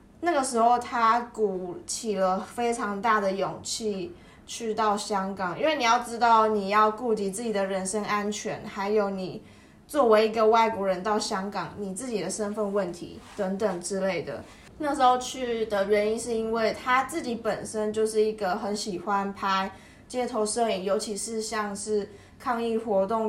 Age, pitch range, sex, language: 20-39, 195-235 Hz, female, Chinese